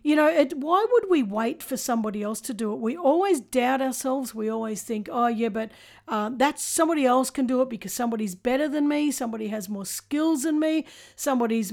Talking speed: 215 wpm